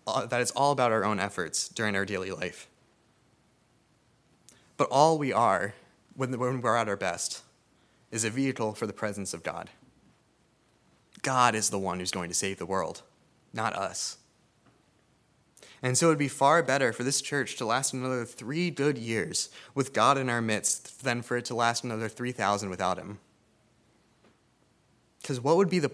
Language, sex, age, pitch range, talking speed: English, male, 20-39, 105-135 Hz, 175 wpm